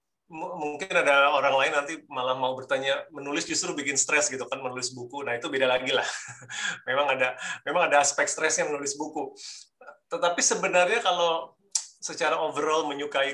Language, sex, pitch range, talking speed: Indonesian, male, 125-165 Hz, 155 wpm